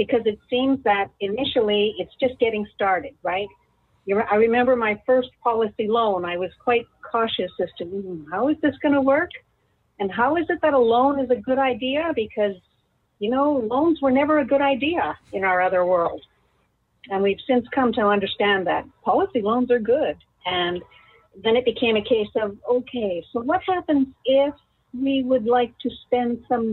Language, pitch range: English, 210-265 Hz